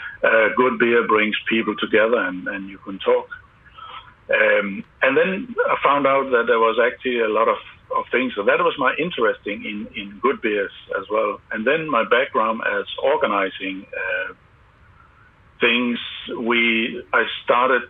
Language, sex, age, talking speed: English, male, 60-79, 160 wpm